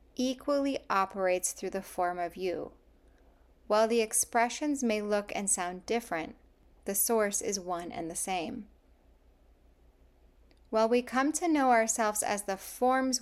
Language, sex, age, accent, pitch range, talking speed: English, female, 10-29, American, 190-245 Hz, 140 wpm